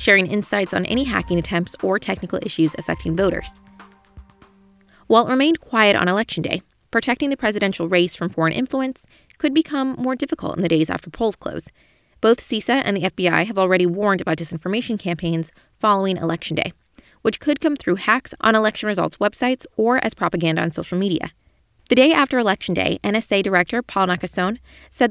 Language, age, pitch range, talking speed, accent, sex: English, 20-39, 175-245 Hz, 175 wpm, American, female